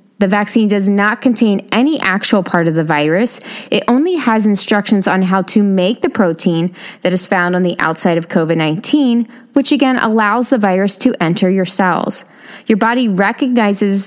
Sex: female